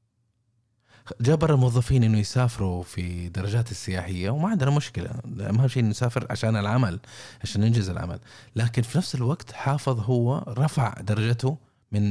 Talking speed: 135 wpm